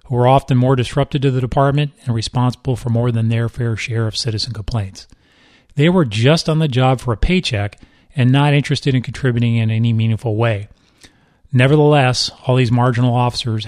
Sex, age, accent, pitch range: male, 40-59, American, 115-145 Hz